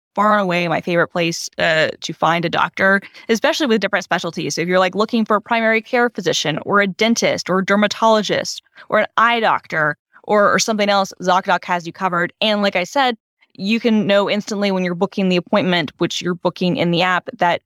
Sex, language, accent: female, English, American